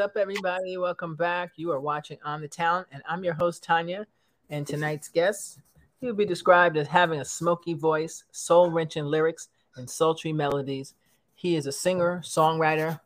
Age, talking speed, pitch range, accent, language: 40-59, 165 wpm, 145-175 Hz, American, English